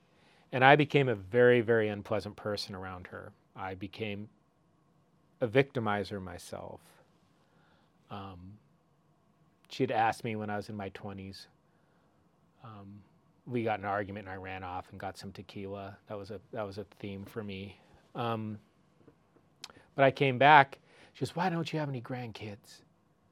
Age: 40-59